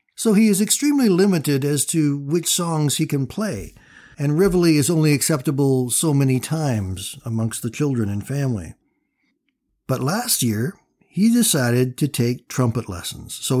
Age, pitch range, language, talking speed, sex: 60-79, 125-165 Hz, English, 155 wpm, male